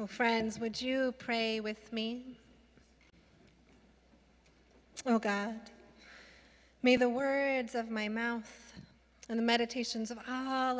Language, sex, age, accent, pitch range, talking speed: English, female, 30-49, American, 225-280 Hz, 110 wpm